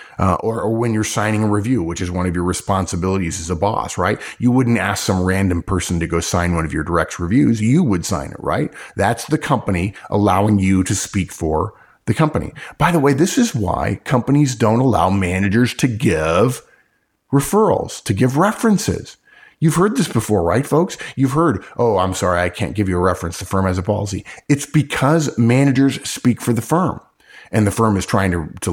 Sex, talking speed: male, 205 wpm